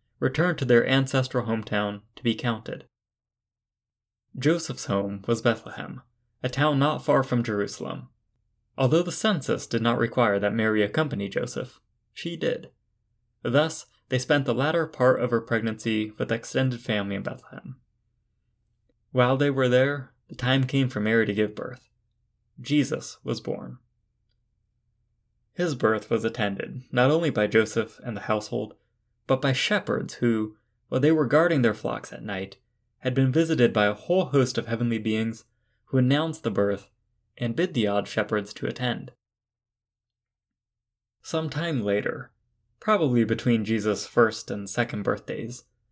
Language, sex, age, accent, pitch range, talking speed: English, male, 20-39, American, 110-130 Hz, 150 wpm